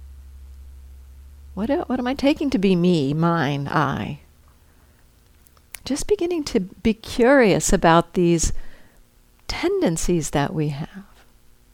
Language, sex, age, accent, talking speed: English, female, 60-79, American, 105 wpm